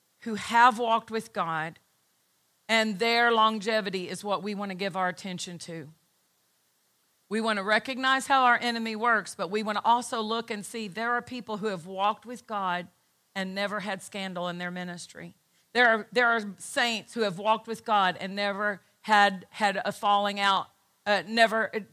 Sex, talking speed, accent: female, 185 wpm, American